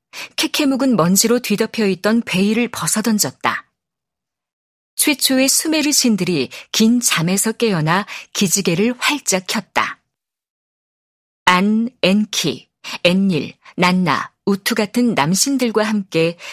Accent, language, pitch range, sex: native, Korean, 185-245 Hz, female